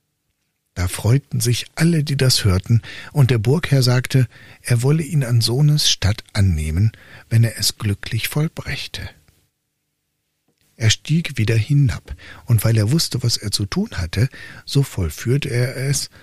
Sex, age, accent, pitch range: male, 60-79, German, 95-135 Hz